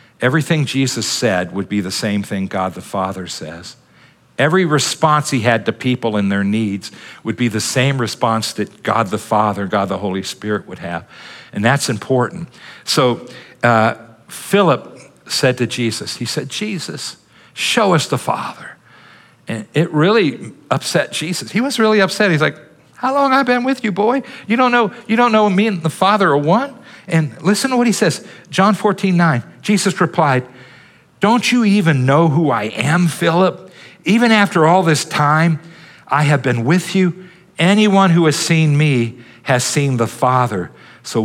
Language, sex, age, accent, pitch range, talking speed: English, male, 50-69, American, 110-175 Hz, 175 wpm